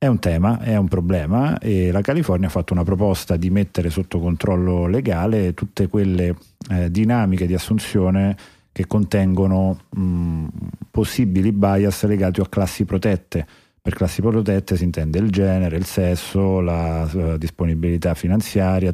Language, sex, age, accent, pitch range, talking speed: Italian, male, 40-59, native, 85-100 Hz, 145 wpm